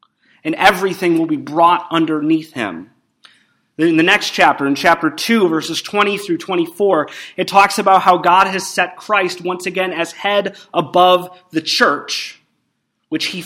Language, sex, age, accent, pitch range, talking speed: English, male, 30-49, American, 155-195 Hz, 155 wpm